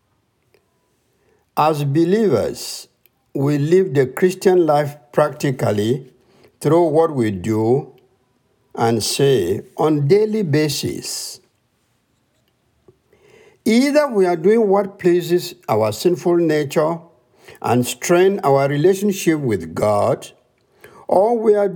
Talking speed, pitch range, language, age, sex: 100 wpm, 130-190 Hz, English, 60-79, male